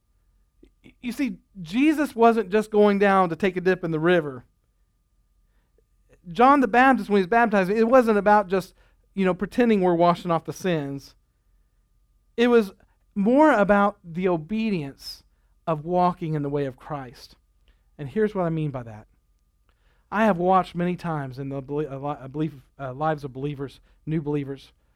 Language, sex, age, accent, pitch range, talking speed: English, male, 40-59, American, 150-215 Hz, 160 wpm